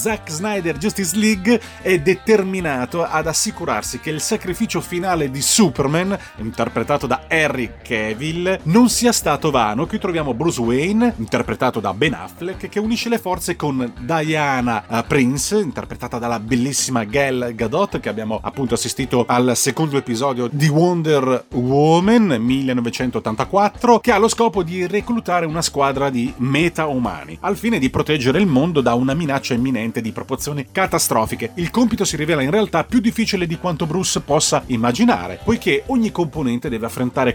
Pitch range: 125-190 Hz